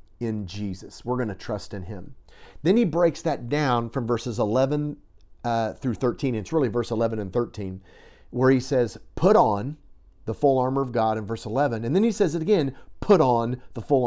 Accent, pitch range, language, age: American, 120-160 Hz, English, 40-59